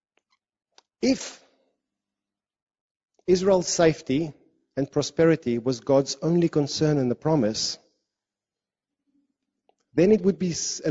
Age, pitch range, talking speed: 30-49, 135-180 Hz, 95 wpm